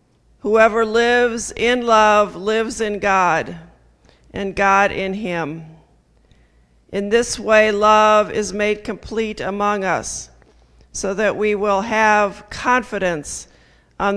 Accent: American